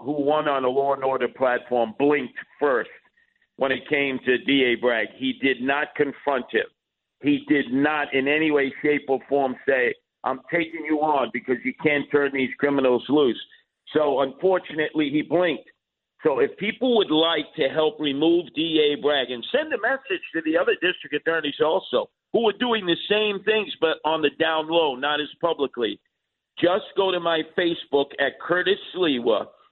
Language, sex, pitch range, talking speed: English, male, 145-185 Hz, 180 wpm